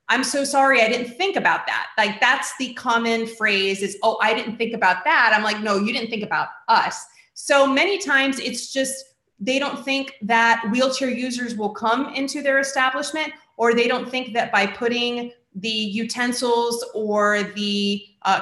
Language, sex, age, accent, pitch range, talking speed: English, female, 30-49, American, 215-255 Hz, 180 wpm